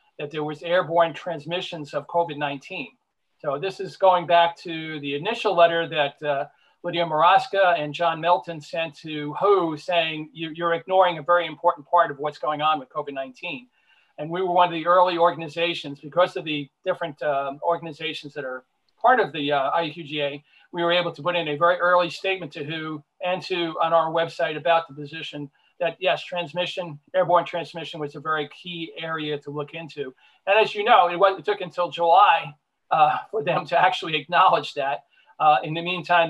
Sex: male